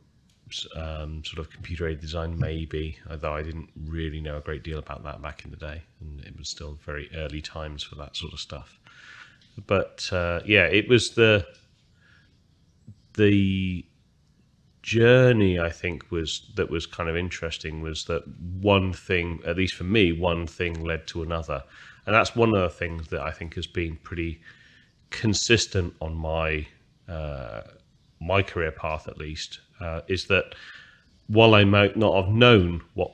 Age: 30-49